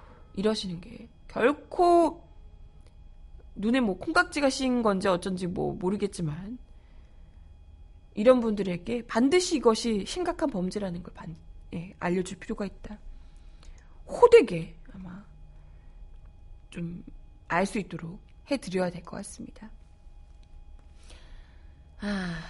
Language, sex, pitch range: Korean, female, 155-220 Hz